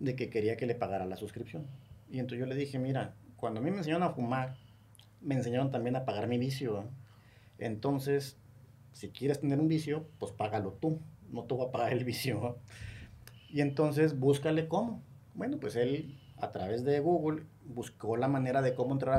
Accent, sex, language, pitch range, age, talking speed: Mexican, male, Spanish, 115-145 Hz, 40-59, 190 wpm